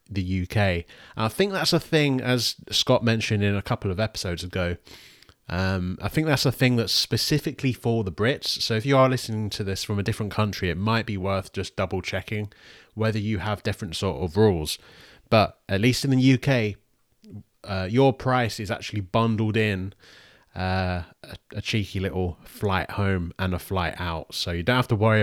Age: 30-49